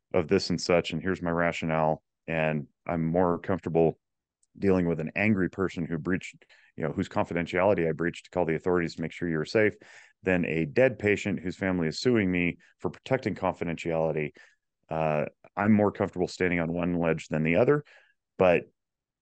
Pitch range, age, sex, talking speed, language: 80-95 Hz, 30-49, male, 180 wpm, English